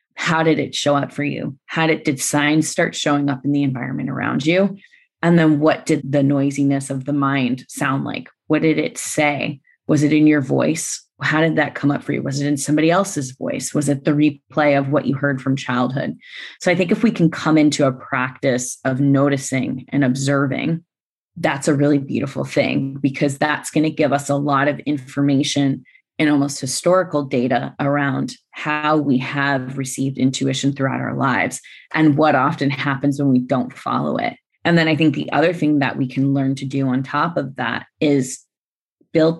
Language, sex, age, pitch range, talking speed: English, female, 20-39, 135-150 Hz, 200 wpm